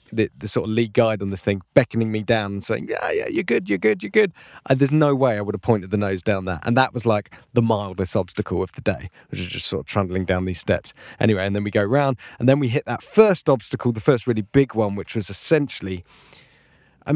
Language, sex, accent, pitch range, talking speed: English, male, British, 110-145 Hz, 260 wpm